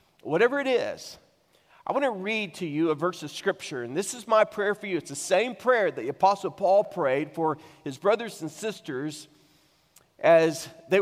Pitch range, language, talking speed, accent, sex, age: 165-230 Hz, English, 195 wpm, American, male, 40-59